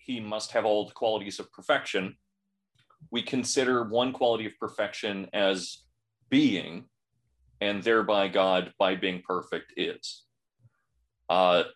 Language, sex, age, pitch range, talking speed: English, male, 30-49, 95-120 Hz, 120 wpm